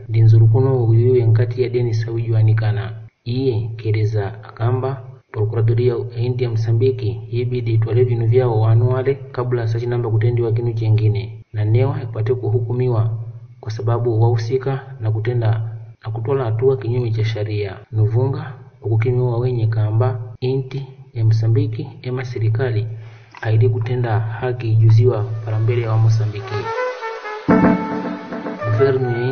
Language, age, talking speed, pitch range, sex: Portuguese, 30-49, 115 wpm, 110-125 Hz, male